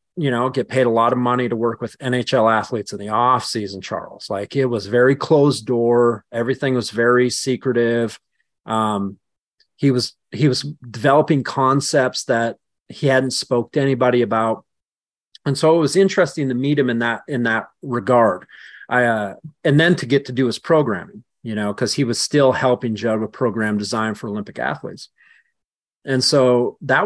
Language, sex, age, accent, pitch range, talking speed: English, male, 40-59, American, 115-140 Hz, 180 wpm